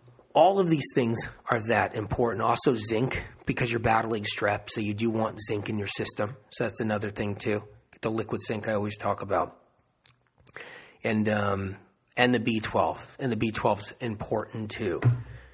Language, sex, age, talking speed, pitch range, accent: English, male, 30-49, 170 wpm, 110-135 Hz, American